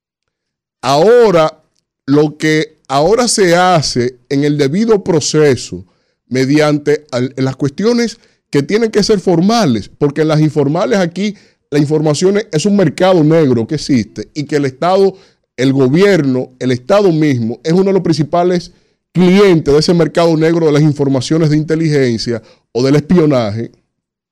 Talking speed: 145 wpm